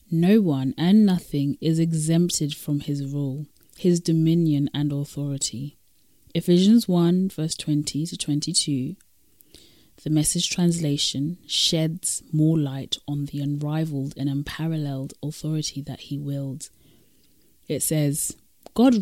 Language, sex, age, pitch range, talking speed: English, female, 30-49, 145-175 Hz, 115 wpm